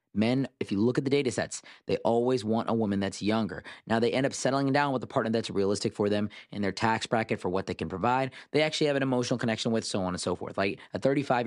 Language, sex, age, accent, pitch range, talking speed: English, male, 30-49, American, 105-130 Hz, 270 wpm